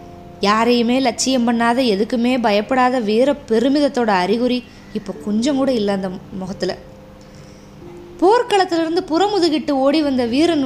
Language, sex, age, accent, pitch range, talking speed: Tamil, female, 20-39, native, 215-295 Hz, 105 wpm